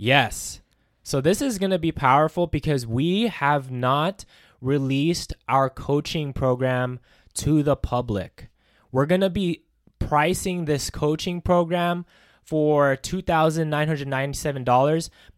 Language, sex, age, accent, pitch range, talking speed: English, male, 20-39, American, 125-160 Hz, 115 wpm